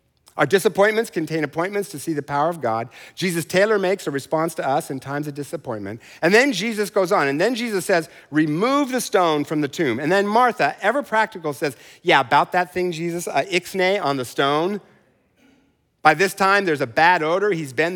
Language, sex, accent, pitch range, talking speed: English, male, American, 115-180 Hz, 205 wpm